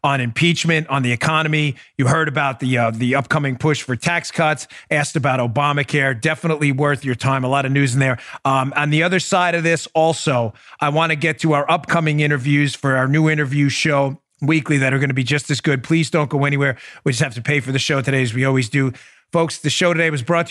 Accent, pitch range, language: American, 135-165 Hz, English